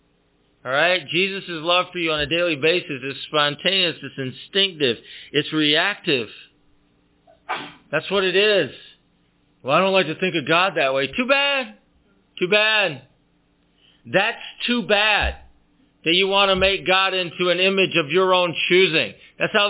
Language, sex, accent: English, male, American